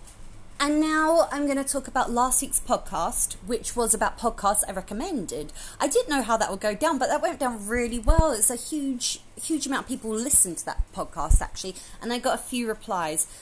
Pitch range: 185-270 Hz